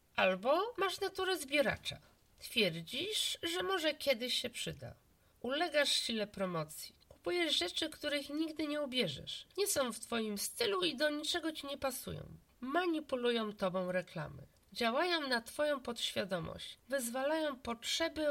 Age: 50-69